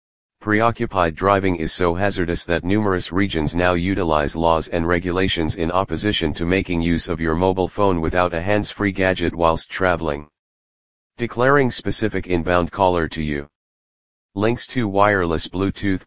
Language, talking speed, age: English, 140 wpm, 40-59